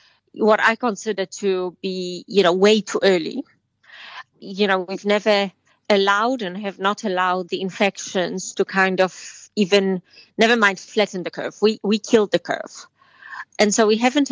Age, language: 30-49, English